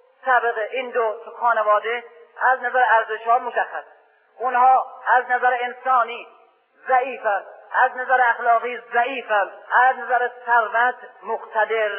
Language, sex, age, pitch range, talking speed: Persian, male, 40-59, 220-250 Hz, 110 wpm